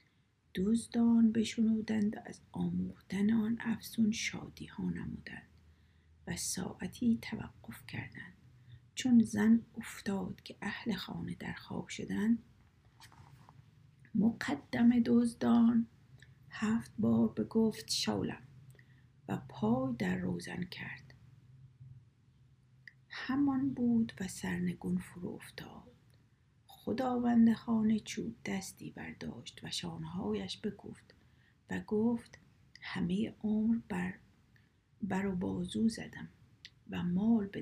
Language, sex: Persian, female